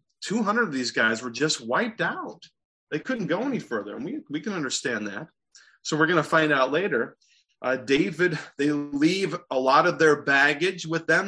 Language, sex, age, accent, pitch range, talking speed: English, male, 30-49, American, 135-190 Hz, 195 wpm